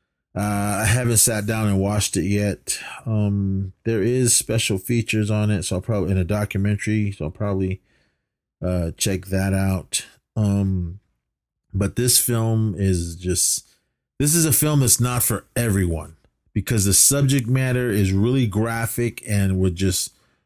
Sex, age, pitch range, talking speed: male, 30-49, 95-120 Hz, 155 wpm